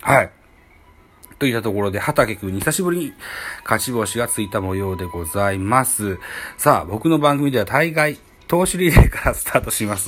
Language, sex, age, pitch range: Japanese, male, 40-59, 95-150 Hz